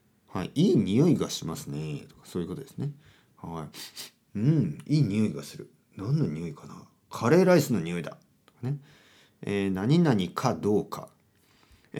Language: Japanese